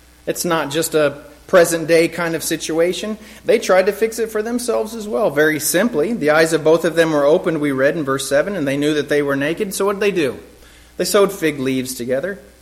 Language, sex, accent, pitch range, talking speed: English, male, American, 110-165 Hz, 235 wpm